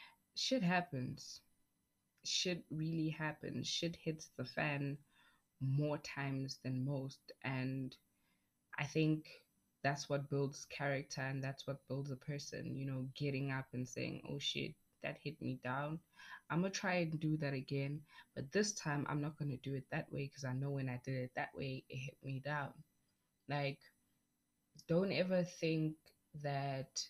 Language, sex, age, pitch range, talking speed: English, female, 20-39, 135-155 Hz, 160 wpm